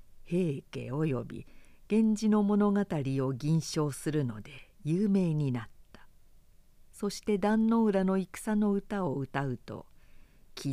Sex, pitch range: female, 135-210 Hz